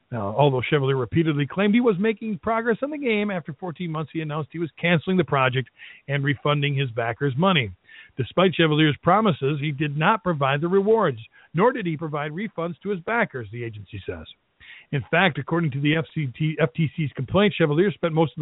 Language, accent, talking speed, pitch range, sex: English, American, 185 wpm, 140-180 Hz, male